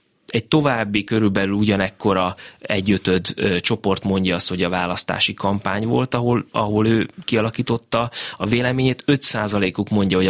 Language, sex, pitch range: Hungarian, male, 95-120 Hz